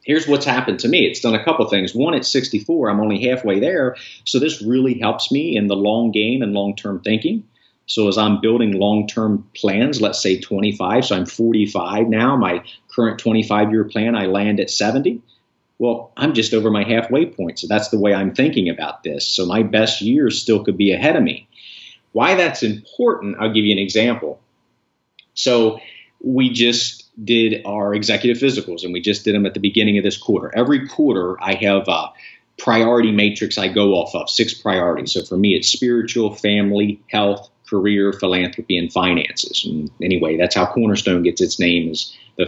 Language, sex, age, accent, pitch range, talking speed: English, male, 40-59, American, 100-115 Hz, 190 wpm